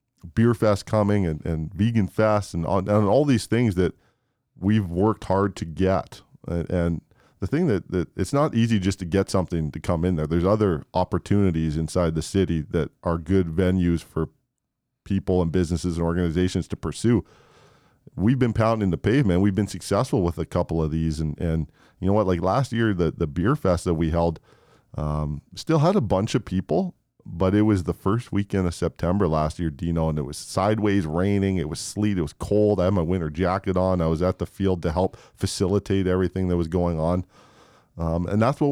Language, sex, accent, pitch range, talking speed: English, male, American, 85-105 Hz, 205 wpm